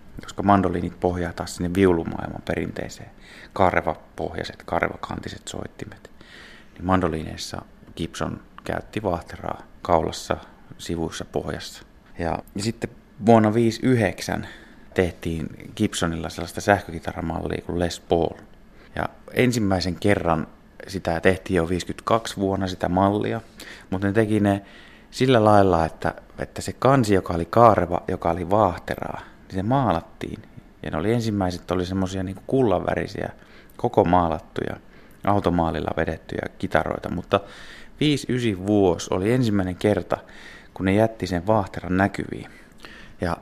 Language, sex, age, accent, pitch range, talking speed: Finnish, male, 30-49, native, 85-105 Hz, 115 wpm